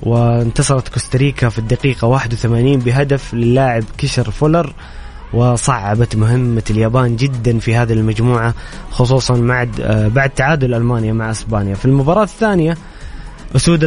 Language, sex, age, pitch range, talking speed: Arabic, male, 20-39, 120-150 Hz, 115 wpm